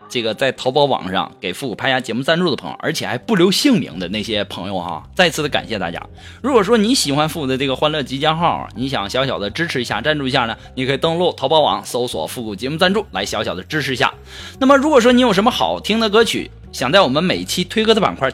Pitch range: 140-215 Hz